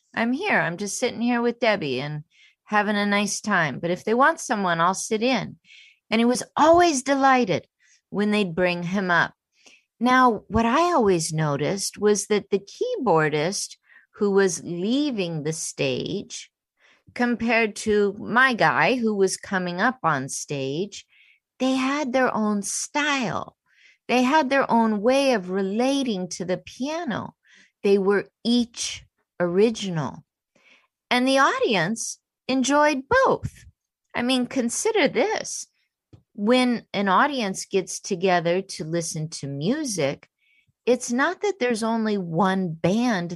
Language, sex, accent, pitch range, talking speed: English, female, American, 180-255 Hz, 135 wpm